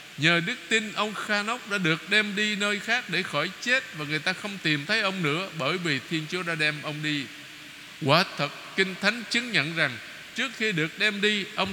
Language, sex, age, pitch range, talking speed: Vietnamese, male, 20-39, 150-205 Hz, 225 wpm